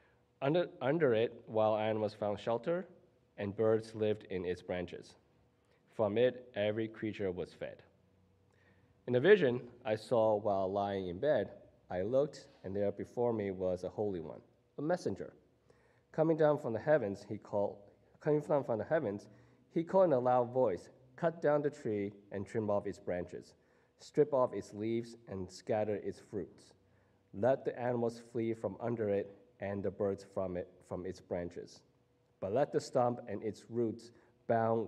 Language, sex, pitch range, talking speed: English, male, 95-120 Hz, 170 wpm